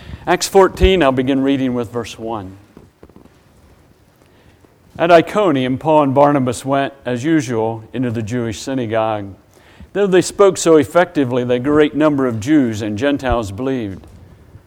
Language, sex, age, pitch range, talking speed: English, male, 50-69, 110-160 Hz, 140 wpm